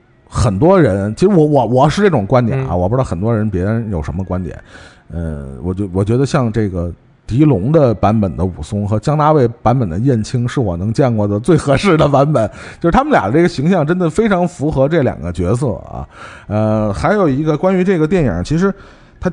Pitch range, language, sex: 105-160 Hz, Chinese, male